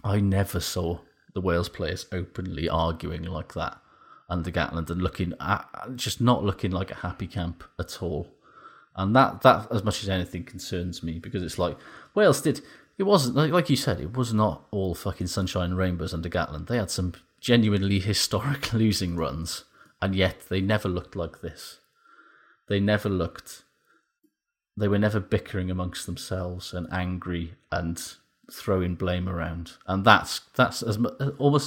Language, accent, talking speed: English, British, 170 wpm